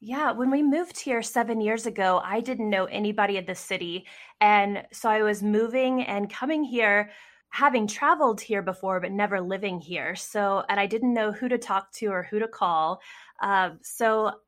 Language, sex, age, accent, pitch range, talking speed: English, female, 20-39, American, 190-225 Hz, 190 wpm